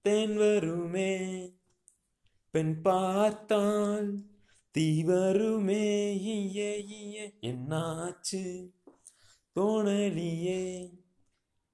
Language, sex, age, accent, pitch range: Tamil, male, 30-49, native, 175-220 Hz